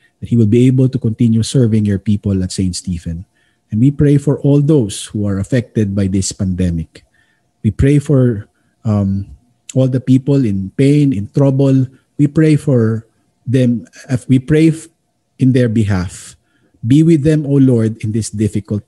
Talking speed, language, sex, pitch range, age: 165 wpm, Filipino, male, 100-130 Hz, 50-69